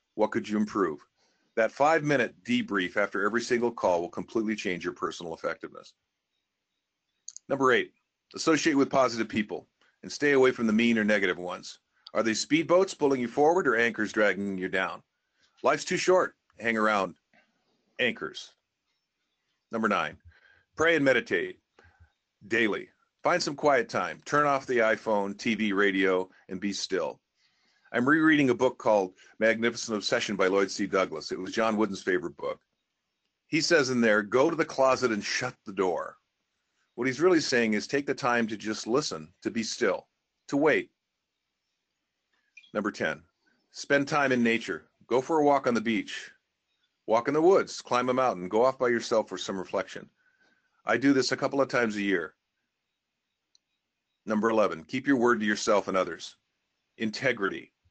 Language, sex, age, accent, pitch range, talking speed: English, male, 50-69, American, 105-140 Hz, 165 wpm